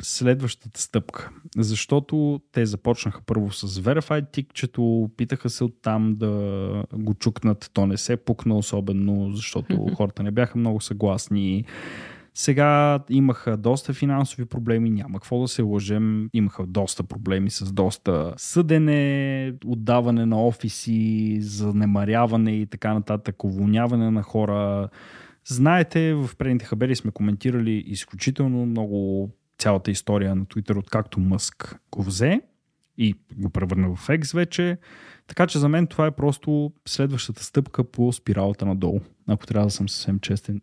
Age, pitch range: 20-39, 100-130 Hz